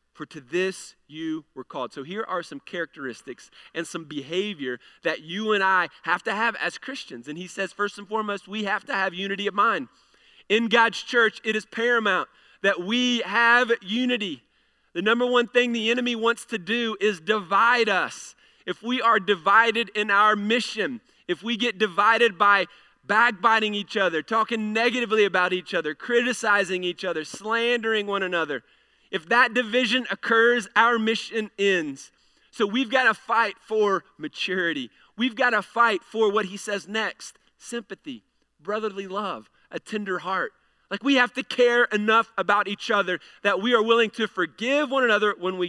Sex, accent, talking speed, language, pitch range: male, American, 175 wpm, English, 190-235 Hz